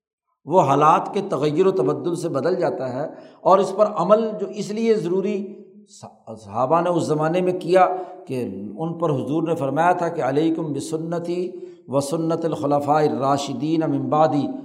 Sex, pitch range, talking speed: male, 145-175 Hz, 165 wpm